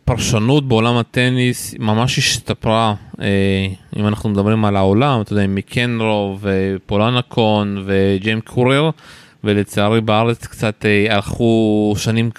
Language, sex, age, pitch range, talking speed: Hebrew, male, 20-39, 105-130 Hz, 110 wpm